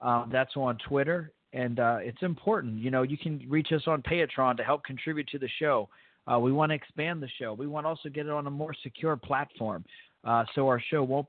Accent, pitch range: American, 120-150 Hz